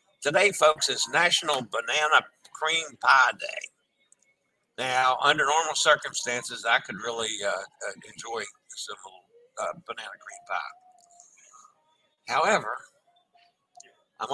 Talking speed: 105 wpm